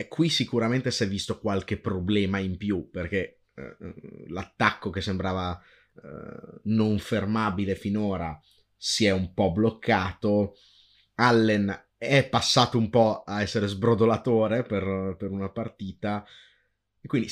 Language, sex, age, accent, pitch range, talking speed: Italian, male, 30-49, native, 95-115 Hz, 130 wpm